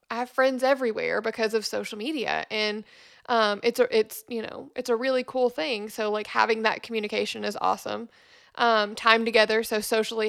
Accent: American